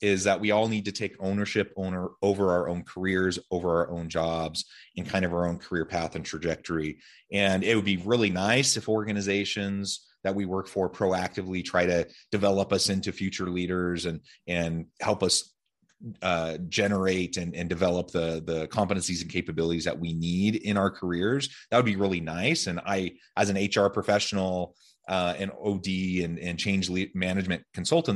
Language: English